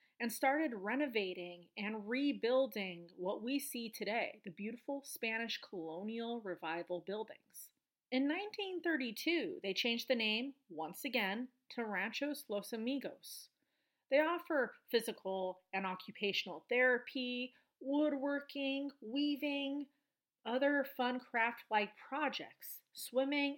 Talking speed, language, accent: 100 wpm, English, American